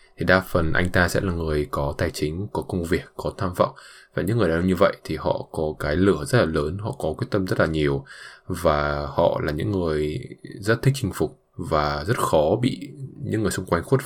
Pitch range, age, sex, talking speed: 85-105 Hz, 20-39, male, 245 wpm